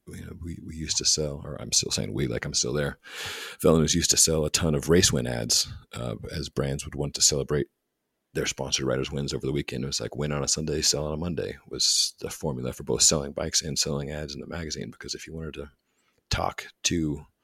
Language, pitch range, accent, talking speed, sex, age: English, 70-80 Hz, American, 245 wpm, male, 40-59